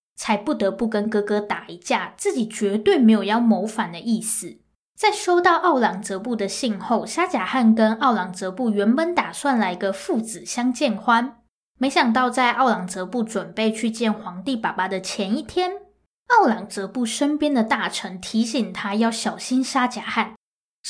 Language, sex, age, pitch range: Chinese, female, 10-29, 200-255 Hz